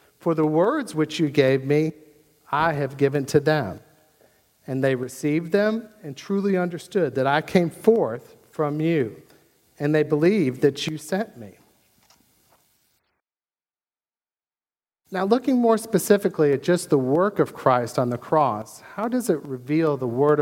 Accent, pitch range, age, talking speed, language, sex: American, 135-170 Hz, 50-69, 150 wpm, English, male